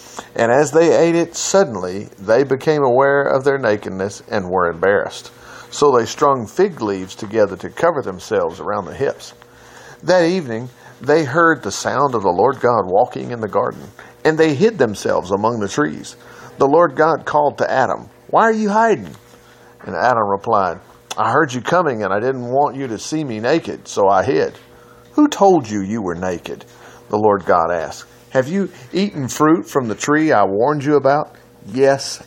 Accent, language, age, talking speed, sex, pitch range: American, English, 50-69, 185 wpm, male, 120-170 Hz